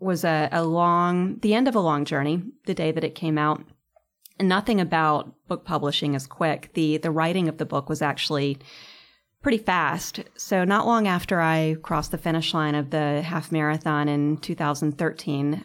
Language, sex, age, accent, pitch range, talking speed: English, female, 30-49, American, 150-175 Hz, 185 wpm